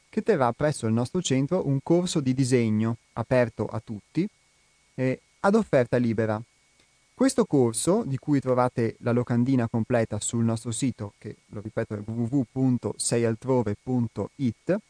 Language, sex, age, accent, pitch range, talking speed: Italian, male, 30-49, native, 115-155 Hz, 135 wpm